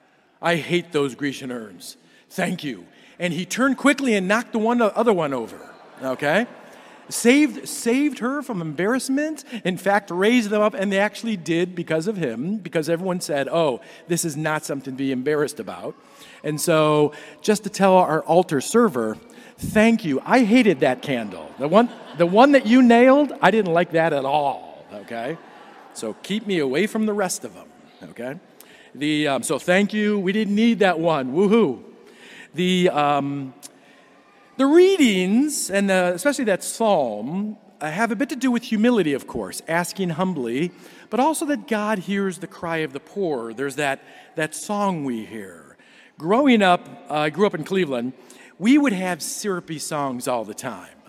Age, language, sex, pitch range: 40-59, English, male, 155-220 Hz